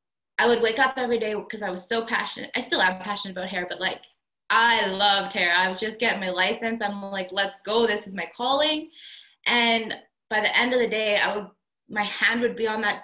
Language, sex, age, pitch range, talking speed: English, female, 20-39, 215-255 Hz, 235 wpm